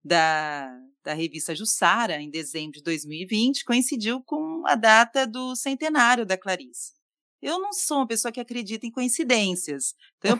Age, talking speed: 30-49, 155 wpm